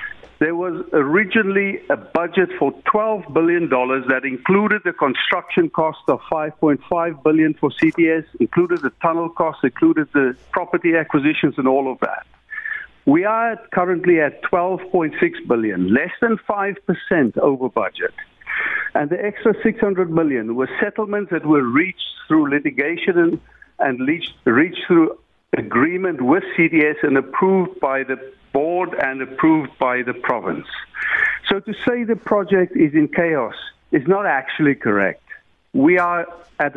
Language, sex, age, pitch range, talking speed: English, male, 60-79, 155-205 Hz, 140 wpm